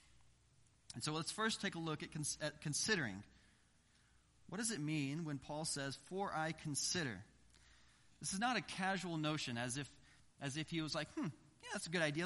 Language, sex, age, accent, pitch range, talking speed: English, male, 30-49, American, 120-160 Hz, 195 wpm